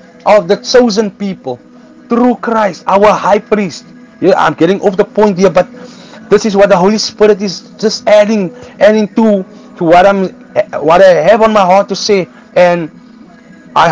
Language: English